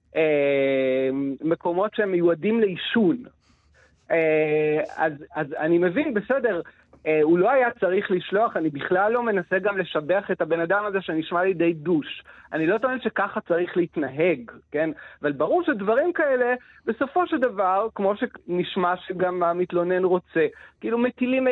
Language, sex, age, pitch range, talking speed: Hebrew, male, 40-59, 160-210 Hz, 145 wpm